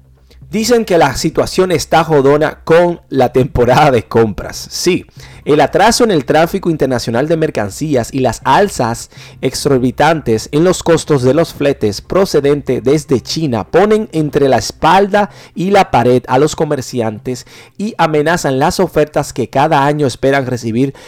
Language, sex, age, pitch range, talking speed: Spanish, male, 40-59, 125-165 Hz, 150 wpm